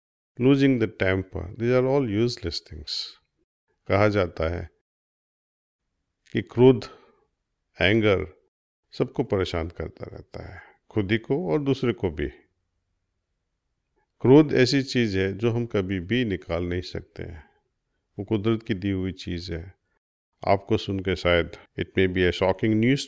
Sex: male